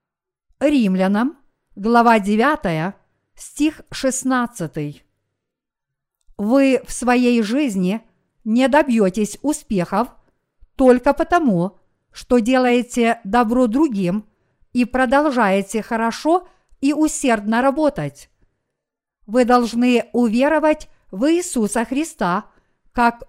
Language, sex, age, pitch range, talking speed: Russian, female, 50-69, 210-270 Hz, 80 wpm